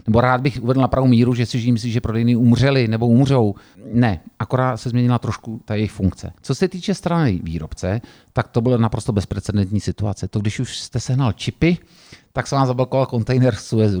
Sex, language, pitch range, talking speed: male, Slovak, 110-135 Hz, 195 wpm